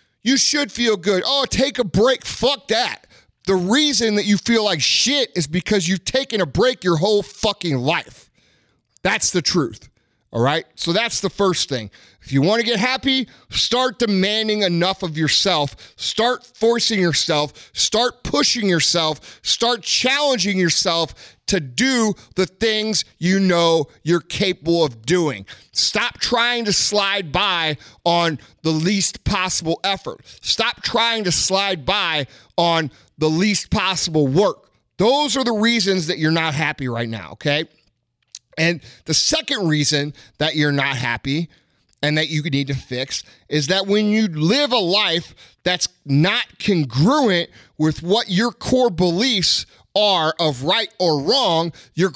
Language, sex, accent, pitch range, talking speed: English, male, American, 150-215 Hz, 155 wpm